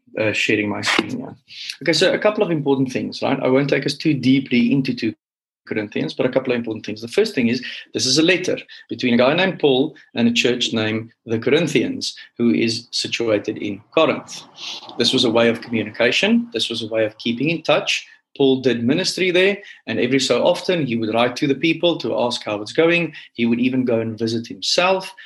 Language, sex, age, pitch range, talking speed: English, male, 30-49, 115-150 Hz, 220 wpm